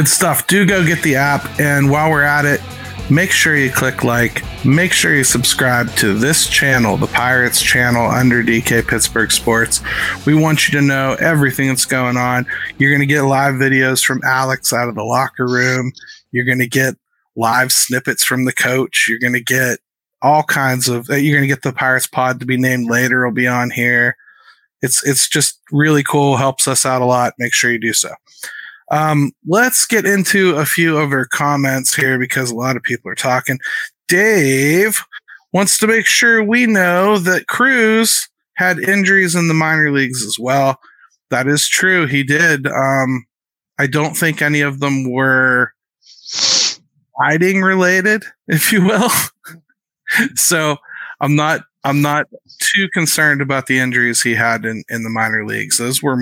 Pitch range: 125-155 Hz